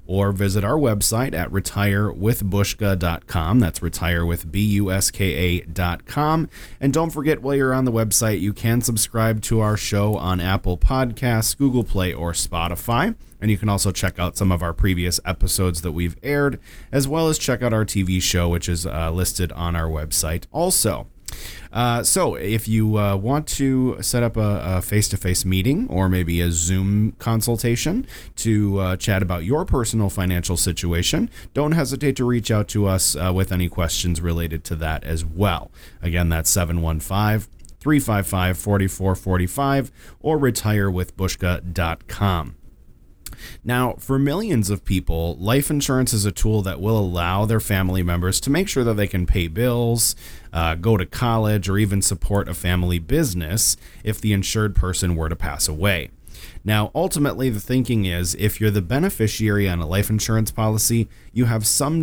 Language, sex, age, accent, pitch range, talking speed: English, male, 30-49, American, 90-115 Hz, 160 wpm